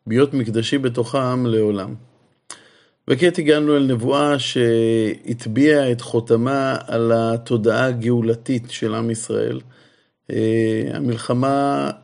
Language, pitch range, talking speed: Hebrew, 115-140 Hz, 90 wpm